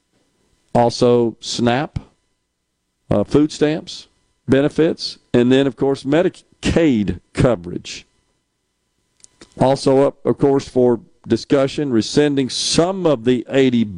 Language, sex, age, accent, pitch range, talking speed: English, male, 50-69, American, 110-135 Hz, 100 wpm